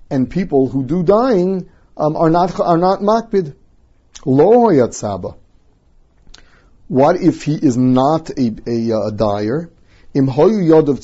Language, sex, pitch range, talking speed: English, male, 125-170 Hz, 130 wpm